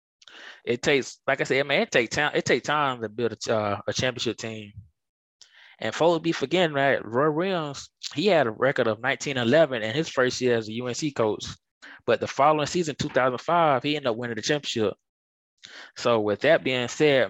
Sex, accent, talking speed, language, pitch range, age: male, American, 210 wpm, English, 110-140 Hz, 20-39